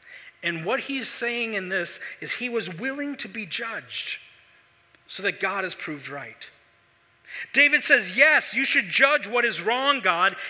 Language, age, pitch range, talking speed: English, 40-59, 150-235 Hz, 165 wpm